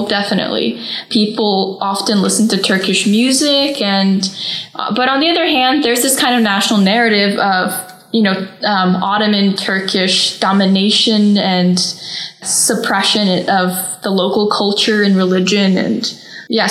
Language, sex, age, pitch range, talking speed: English, female, 10-29, 195-250 Hz, 135 wpm